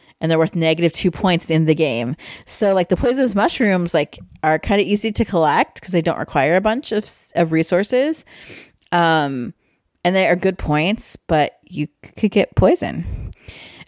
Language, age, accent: English, 30-49, American